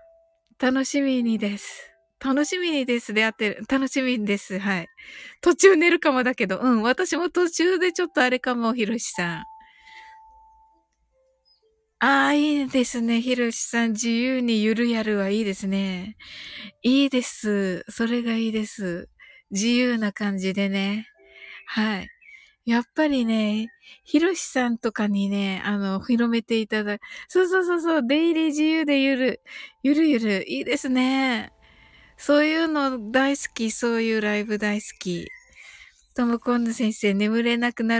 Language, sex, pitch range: Japanese, female, 210-290 Hz